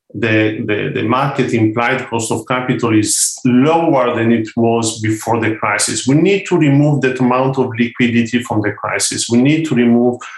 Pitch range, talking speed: 110-130 Hz, 180 wpm